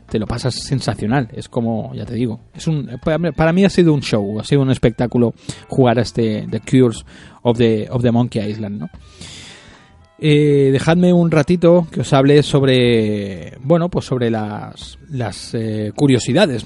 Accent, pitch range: Spanish, 115-140 Hz